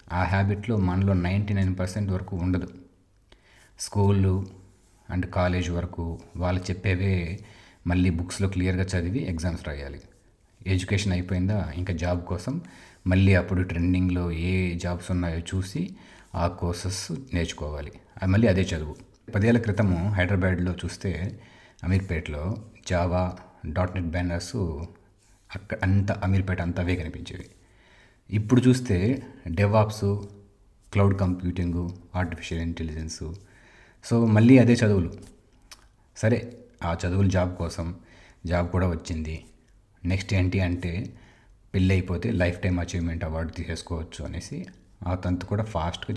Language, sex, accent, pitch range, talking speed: Telugu, male, native, 85-100 Hz, 110 wpm